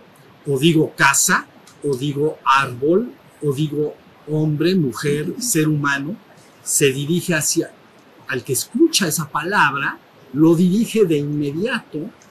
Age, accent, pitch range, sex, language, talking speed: 50-69, Mexican, 150-185 Hz, male, Spanish, 115 wpm